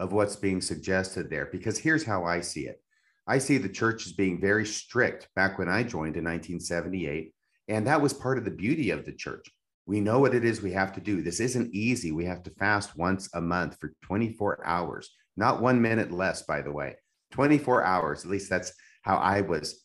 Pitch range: 95-120 Hz